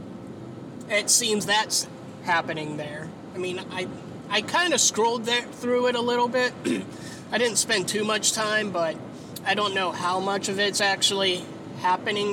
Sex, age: male, 20-39